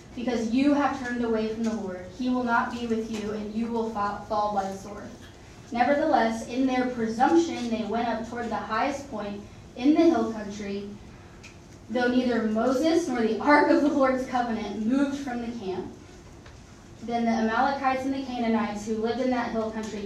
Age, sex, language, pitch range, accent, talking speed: 20-39, female, English, 210-260 Hz, American, 190 wpm